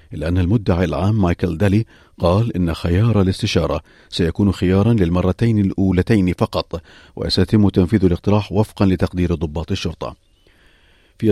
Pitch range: 85-105 Hz